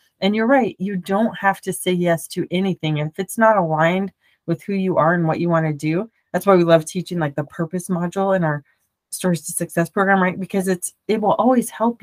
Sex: female